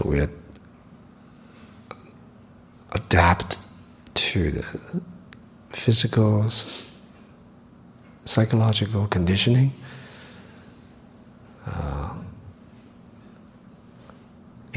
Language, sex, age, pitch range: English, male, 50-69, 85-120 Hz